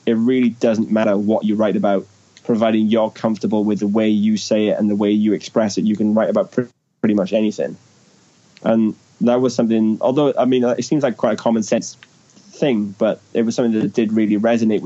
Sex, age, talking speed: male, 10-29, 215 wpm